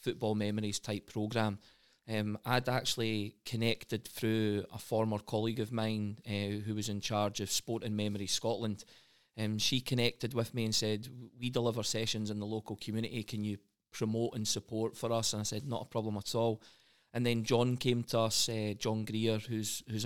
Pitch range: 110-120 Hz